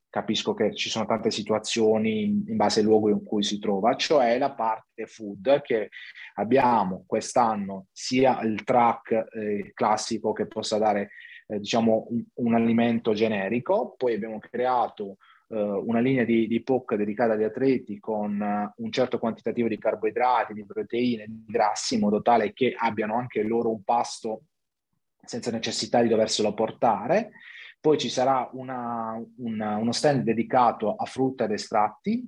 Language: Italian